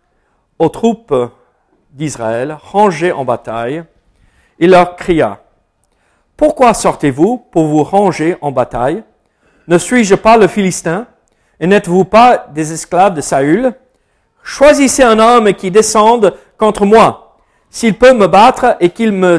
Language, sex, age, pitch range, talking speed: French, male, 50-69, 150-225 Hz, 130 wpm